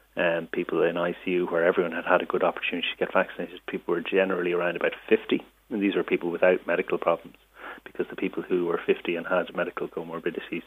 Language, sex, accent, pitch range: English, male, Irish, 85-95 Hz